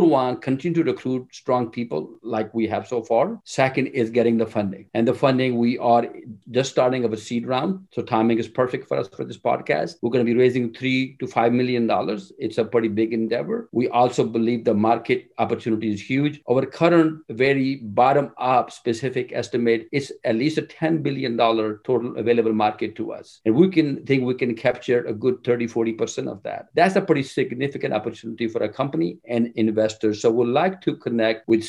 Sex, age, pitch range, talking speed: male, 50-69, 115-135 Hz, 200 wpm